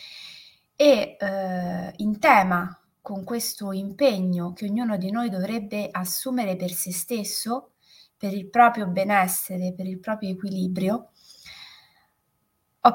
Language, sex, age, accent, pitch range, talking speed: Italian, female, 20-39, native, 190-245 Hz, 115 wpm